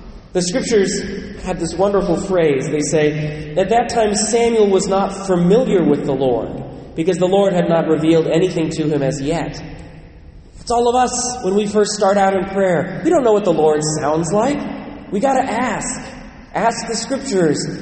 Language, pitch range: English, 155-205 Hz